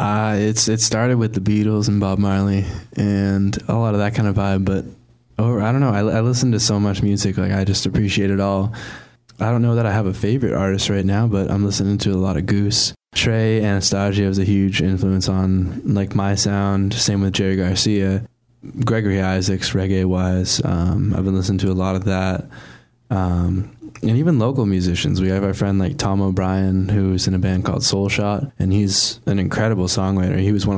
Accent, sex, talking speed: American, male, 210 wpm